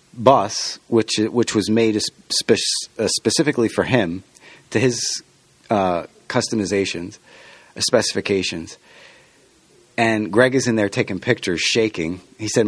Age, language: 30-49, English